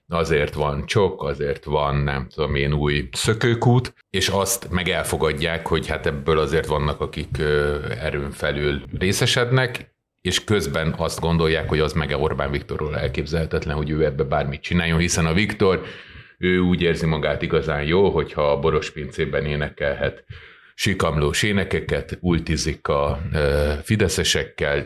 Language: Hungarian